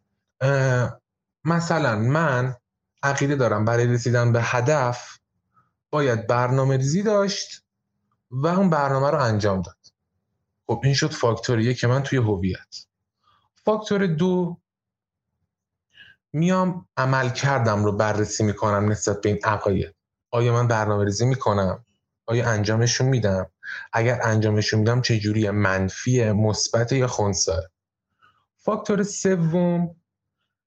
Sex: male